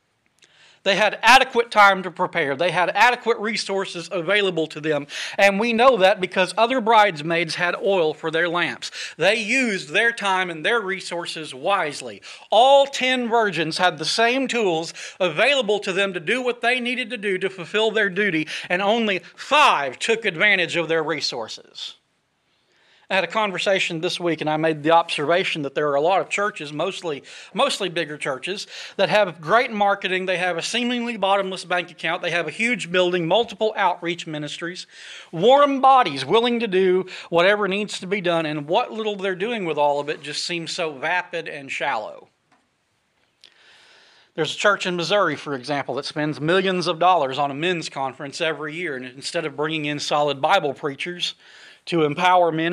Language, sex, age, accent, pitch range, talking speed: English, male, 40-59, American, 160-205 Hz, 180 wpm